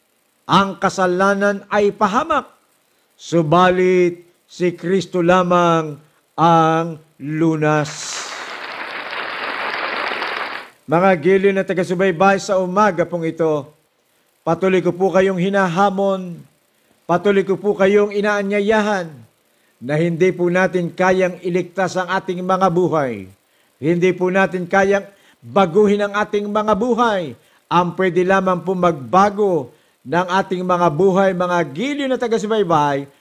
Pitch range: 165-190 Hz